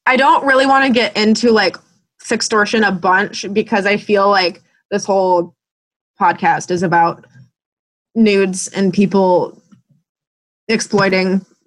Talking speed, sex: 125 wpm, female